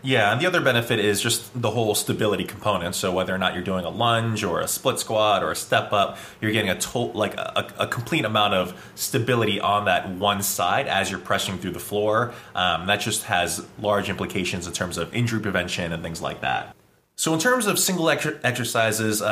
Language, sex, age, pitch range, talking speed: English, male, 20-39, 95-120 Hz, 215 wpm